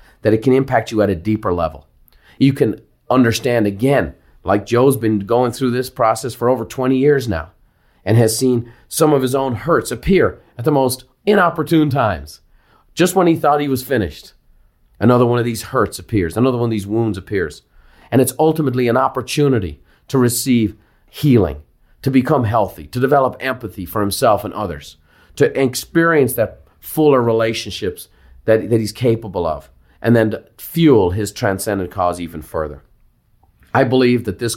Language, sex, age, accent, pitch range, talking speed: English, male, 40-59, American, 95-125 Hz, 170 wpm